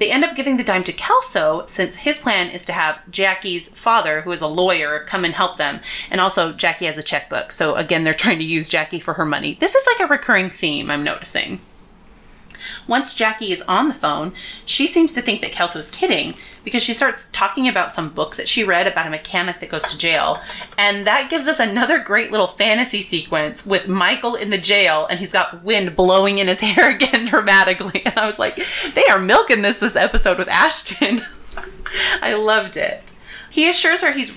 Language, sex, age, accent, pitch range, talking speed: English, female, 30-49, American, 175-255 Hz, 210 wpm